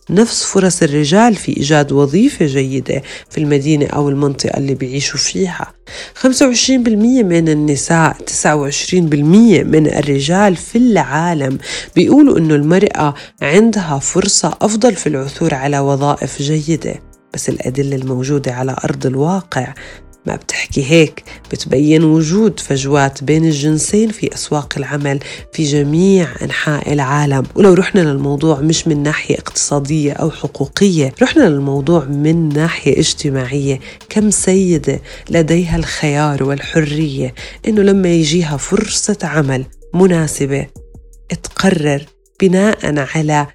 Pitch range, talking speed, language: 140-180 Hz, 115 wpm, Arabic